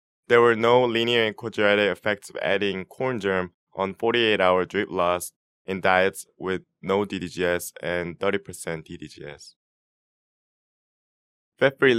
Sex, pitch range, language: male, 90-110 Hz, English